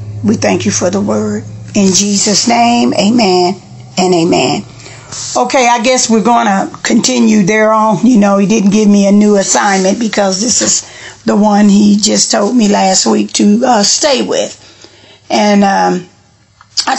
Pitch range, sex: 200-230 Hz, female